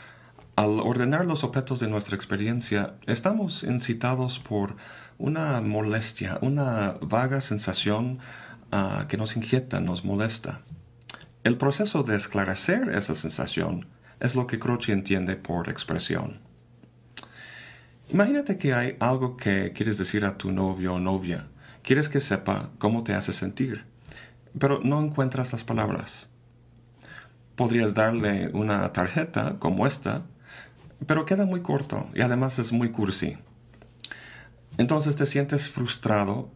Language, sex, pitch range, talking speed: Spanish, male, 105-135 Hz, 125 wpm